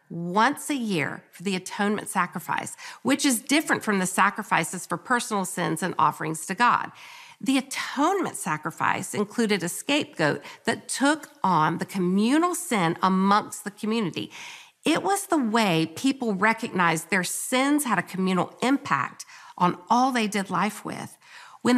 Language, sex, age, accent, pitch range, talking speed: English, female, 50-69, American, 195-290 Hz, 150 wpm